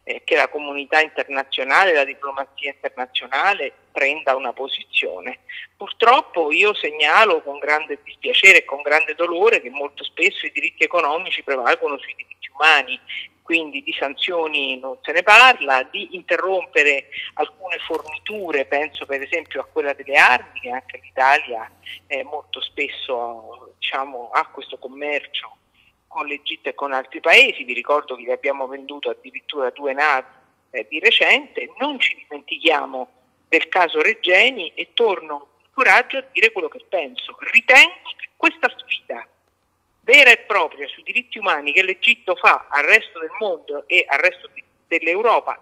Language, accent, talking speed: Italian, native, 145 wpm